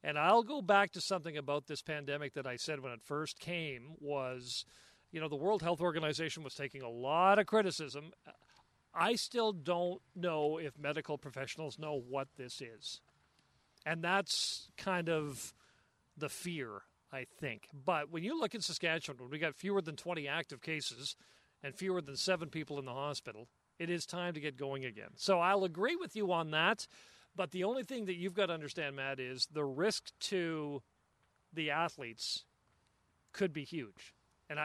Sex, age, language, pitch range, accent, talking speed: male, 40-59, English, 140-175 Hz, American, 180 wpm